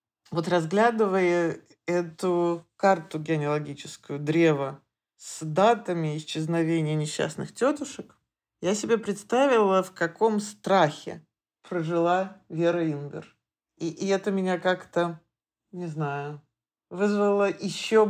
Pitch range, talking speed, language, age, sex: 160-190 Hz, 95 wpm, Russian, 50-69, male